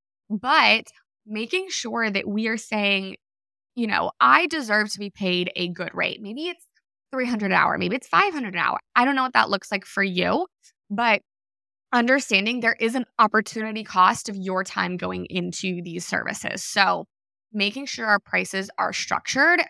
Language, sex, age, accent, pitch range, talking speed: English, female, 20-39, American, 185-230 Hz, 175 wpm